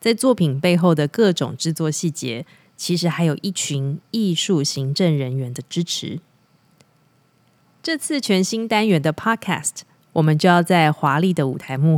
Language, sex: Chinese, female